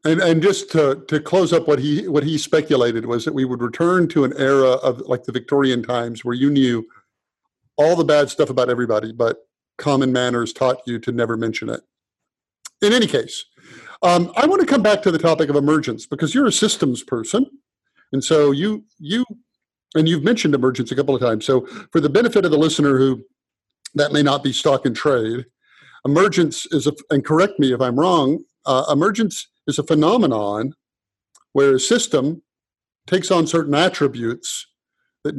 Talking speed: 190 wpm